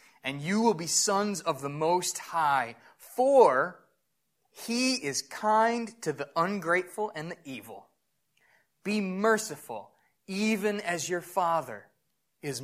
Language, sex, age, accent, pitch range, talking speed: English, male, 20-39, American, 145-200 Hz, 125 wpm